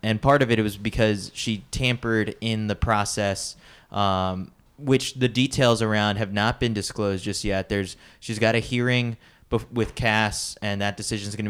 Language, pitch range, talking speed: English, 100-120 Hz, 190 wpm